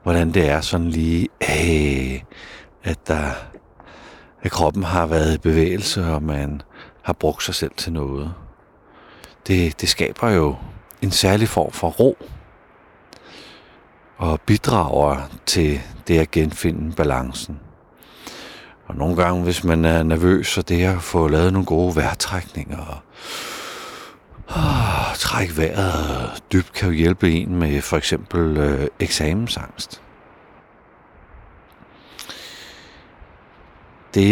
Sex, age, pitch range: male, 60-79, 80-95 Hz